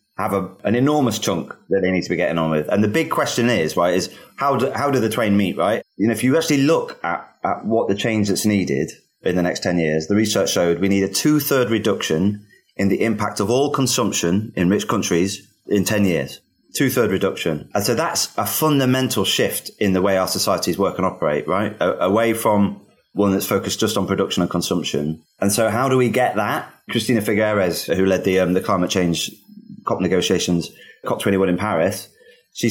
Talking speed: 215 wpm